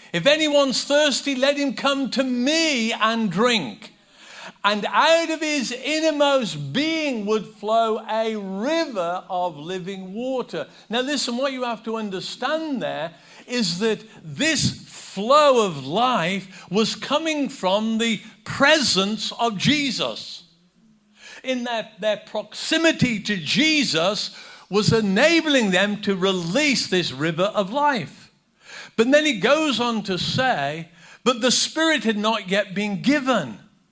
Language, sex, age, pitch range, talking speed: English, male, 50-69, 195-275 Hz, 130 wpm